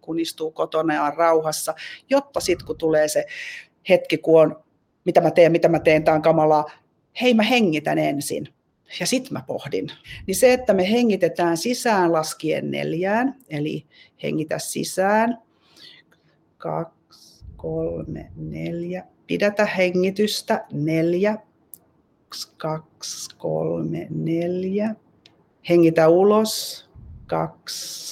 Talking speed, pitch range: 115 wpm, 160-205 Hz